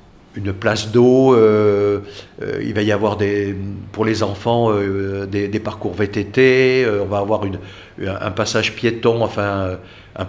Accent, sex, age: French, male, 50-69